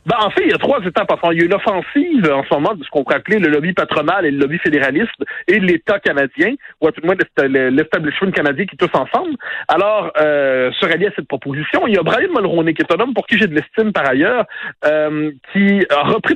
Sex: male